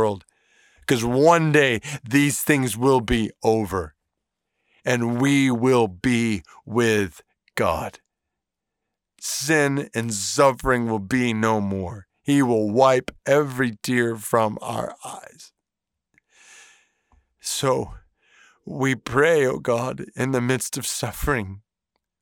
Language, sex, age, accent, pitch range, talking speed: English, male, 50-69, American, 115-150 Hz, 105 wpm